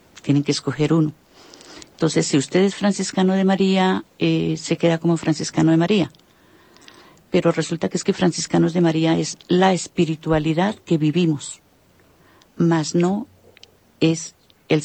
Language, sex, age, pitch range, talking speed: Spanish, female, 50-69, 155-185 Hz, 140 wpm